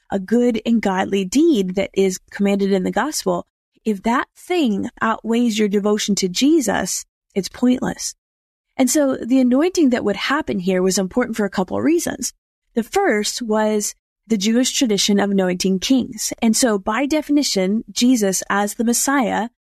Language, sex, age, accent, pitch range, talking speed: English, female, 30-49, American, 200-260 Hz, 160 wpm